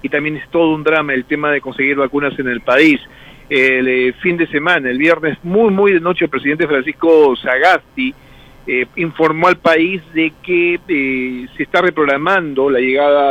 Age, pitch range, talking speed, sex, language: 40-59, 135-160 Hz, 185 wpm, male, Spanish